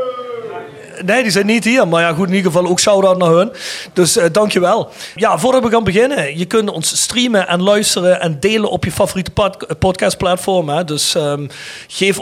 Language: Dutch